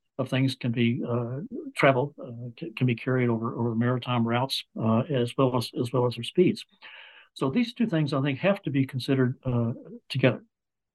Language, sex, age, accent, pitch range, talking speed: English, male, 60-79, American, 120-140 Hz, 190 wpm